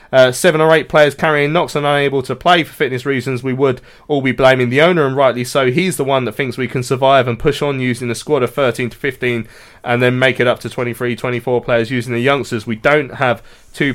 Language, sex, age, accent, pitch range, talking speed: English, male, 20-39, British, 115-135 Hz, 250 wpm